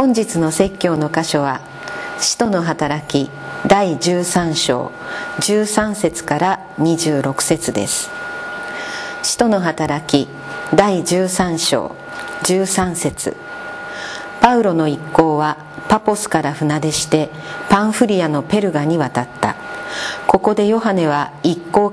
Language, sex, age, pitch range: Japanese, female, 50-69, 155-195 Hz